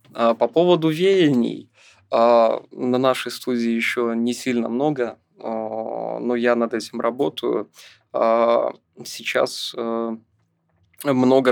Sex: male